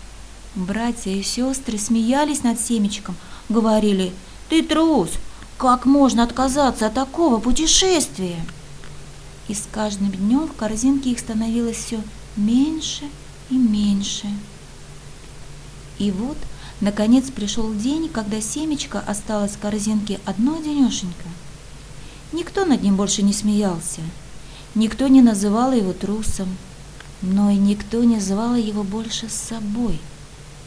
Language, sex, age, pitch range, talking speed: Russian, female, 30-49, 195-245 Hz, 115 wpm